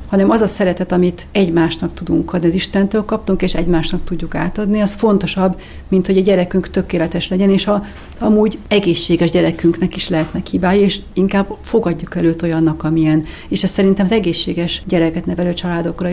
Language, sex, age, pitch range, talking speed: Hungarian, female, 40-59, 165-190 Hz, 170 wpm